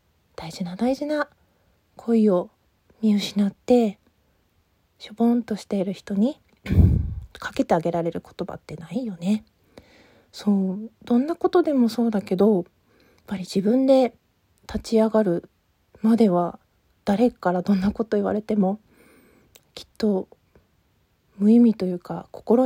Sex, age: female, 40-59